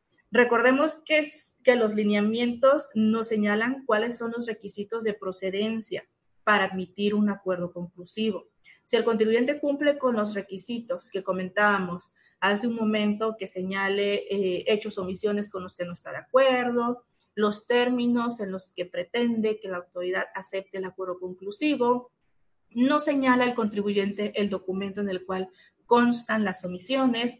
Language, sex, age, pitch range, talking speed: Spanish, female, 30-49, 200-245 Hz, 150 wpm